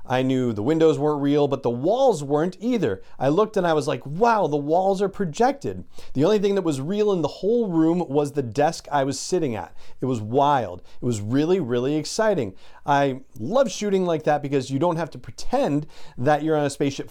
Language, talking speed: English, 220 wpm